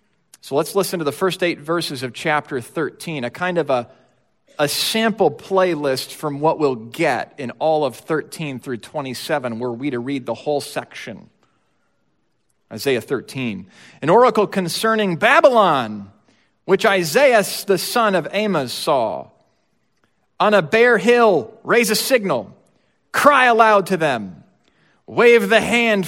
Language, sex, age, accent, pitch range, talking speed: English, male, 40-59, American, 150-210 Hz, 145 wpm